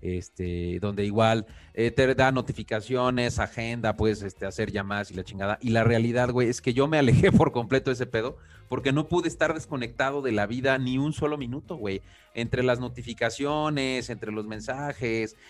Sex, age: male, 30-49